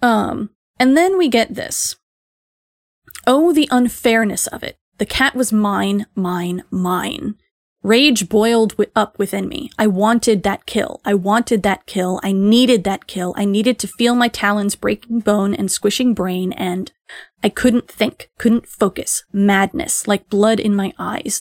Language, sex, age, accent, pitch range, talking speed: English, female, 20-39, American, 195-225 Hz, 160 wpm